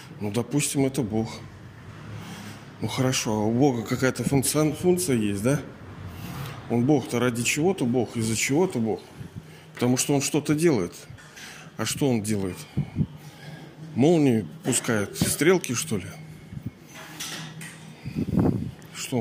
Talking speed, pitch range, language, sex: 115 wpm, 115-145 Hz, Russian, male